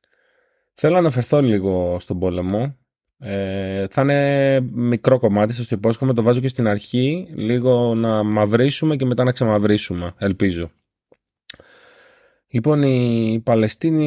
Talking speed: 130 wpm